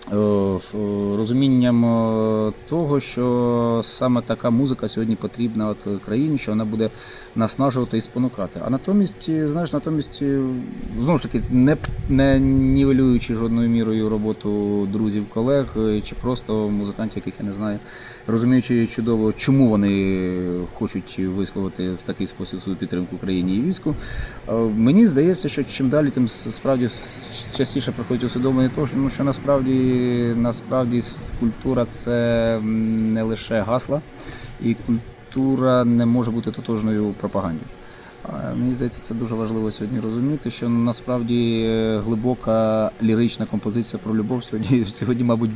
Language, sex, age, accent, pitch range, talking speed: Ukrainian, male, 30-49, native, 110-125 Hz, 130 wpm